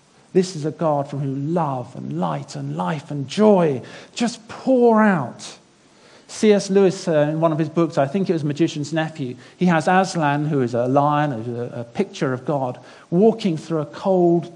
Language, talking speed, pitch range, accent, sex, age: English, 180 wpm, 145-200 Hz, British, male, 50-69